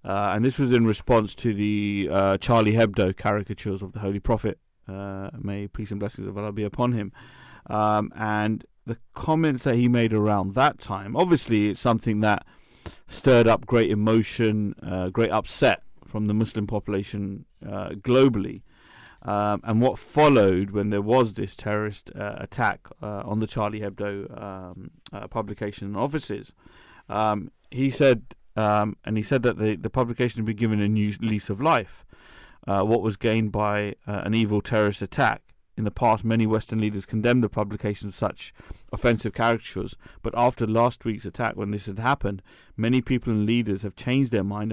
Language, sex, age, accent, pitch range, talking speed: English, male, 30-49, British, 100-115 Hz, 175 wpm